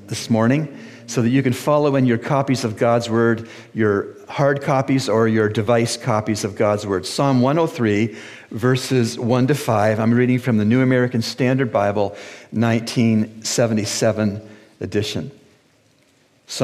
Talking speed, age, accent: 145 wpm, 50-69, American